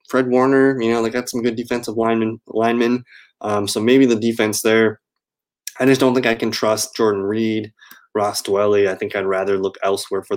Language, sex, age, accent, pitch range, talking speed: English, male, 20-39, American, 105-130 Hz, 210 wpm